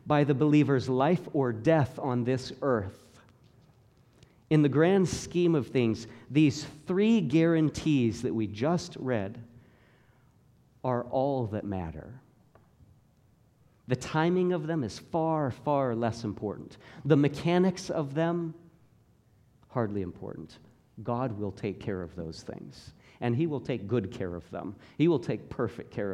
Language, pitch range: English, 110-145 Hz